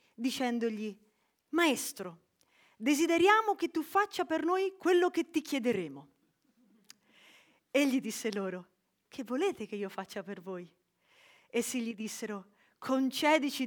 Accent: native